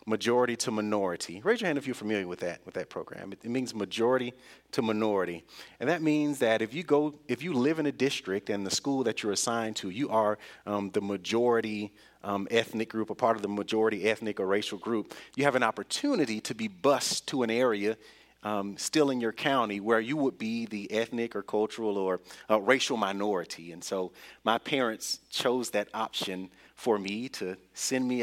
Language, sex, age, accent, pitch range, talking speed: English, male, 40-59, American, 100-120 Hz, 200 wpm